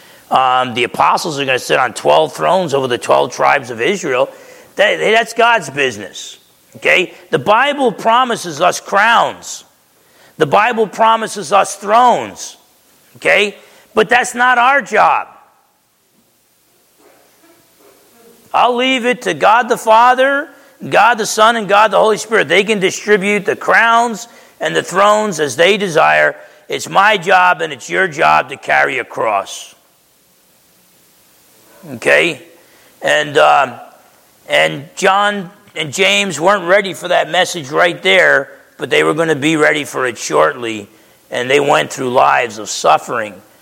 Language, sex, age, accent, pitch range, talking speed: English, male, 40-59, American, 140-220 Hz, 145 wpm